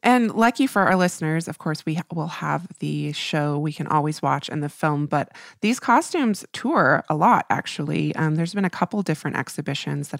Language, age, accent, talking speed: English, 20-39, American, 200 wpm